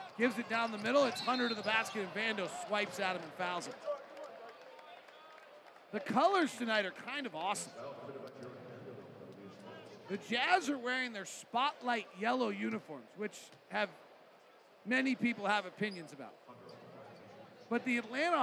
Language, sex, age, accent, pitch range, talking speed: English, male, 40-59, American, 200-255 Hz, 140 wpm